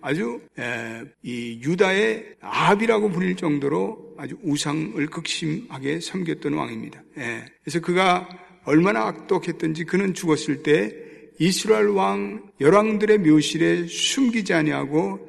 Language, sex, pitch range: Korean, male, 155-220 Hz